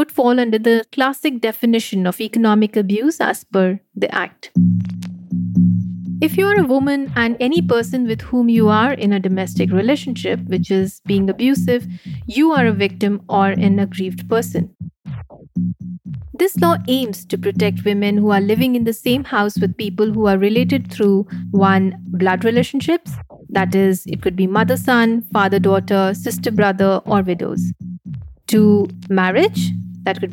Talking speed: 150 wpm